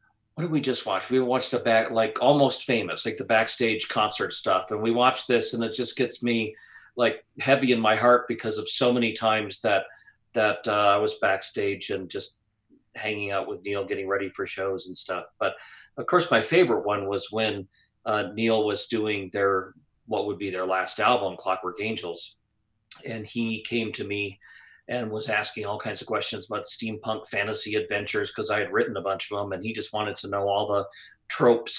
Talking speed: 205 wpm